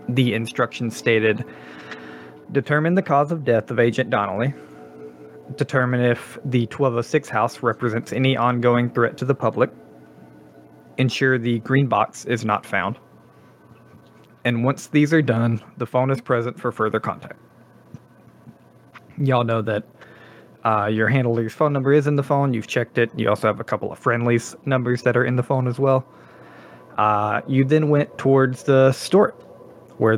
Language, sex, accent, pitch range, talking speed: English, male, American, 110-135 Hz, 160 wpm